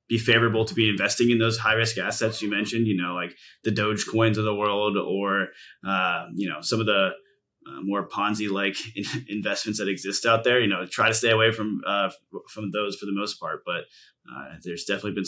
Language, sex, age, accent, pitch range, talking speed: English, male, 20-39, American, 100-115 Hz, 220 wpm